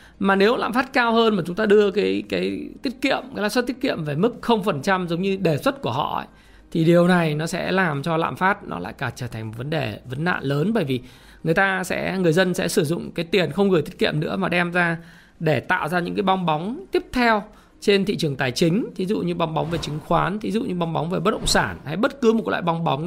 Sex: male